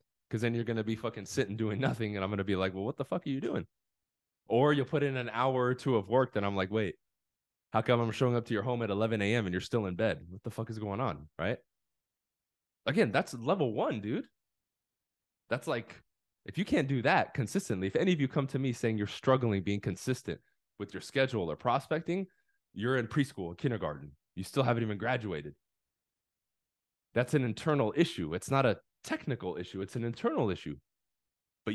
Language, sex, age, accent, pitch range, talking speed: English, male, 20-39, American, 100-130 Hz, 215 wpm